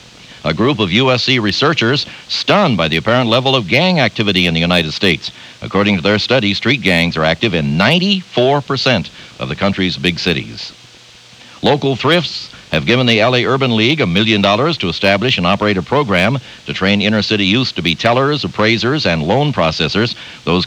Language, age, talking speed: English, 60-79, 175 wpm